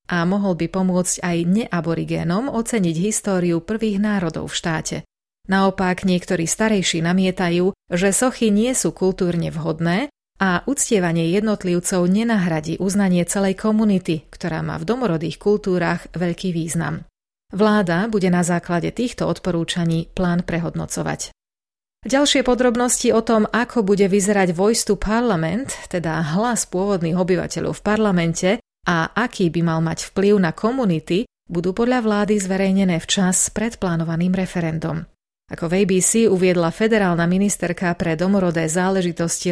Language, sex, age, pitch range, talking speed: Slovak, female, 30-49, 170-210 Hz, 130 wpm